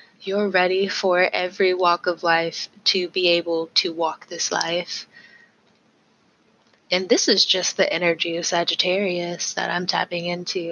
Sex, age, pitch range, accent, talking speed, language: female, 20-39, 170-195 Hz, American, 145 wpm, English